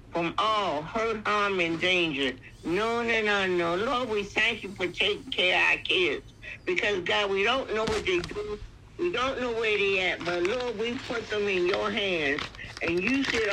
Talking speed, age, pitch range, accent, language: 205 wpm, 60-79, 180-235 Hz, American, English